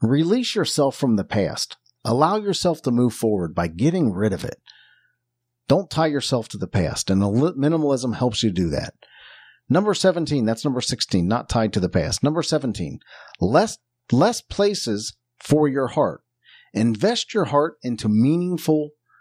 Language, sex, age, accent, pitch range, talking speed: English, male, 50-69, American, 115-160 Hz, 155 wpm